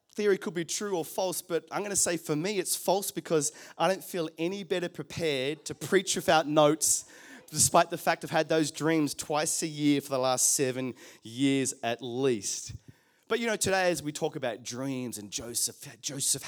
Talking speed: 200 wpm